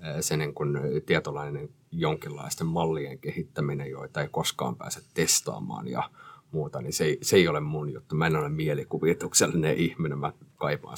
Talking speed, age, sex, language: 160 wpm, 30-49, male, Finnish